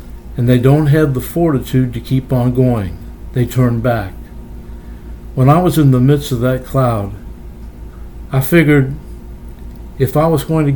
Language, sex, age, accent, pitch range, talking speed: English, male, 60-79, American, 95-135 Hz, 160 wpm